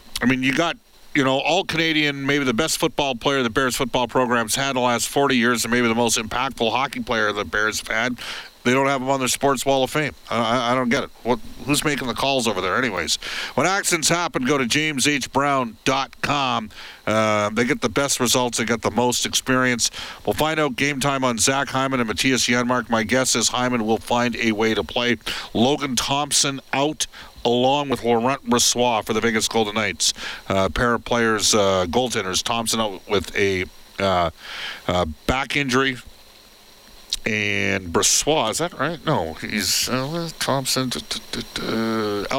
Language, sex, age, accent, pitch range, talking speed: English, male, 50-69, American, 110-140 Hz, 190 wpm